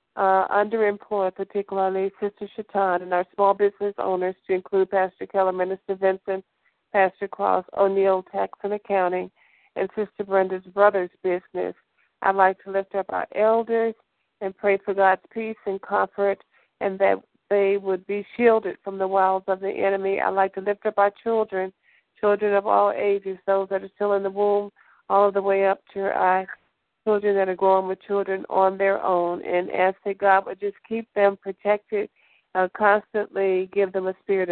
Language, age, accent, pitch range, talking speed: English, 50-69, American, 190-205 Hz, 175 wpm